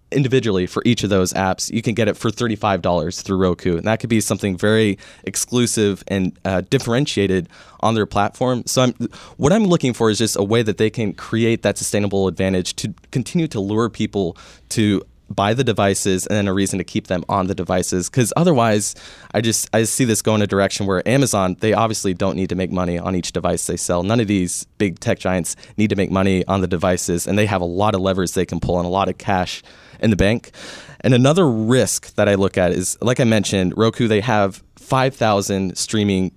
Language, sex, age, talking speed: English, male, 20-39, 225 wpm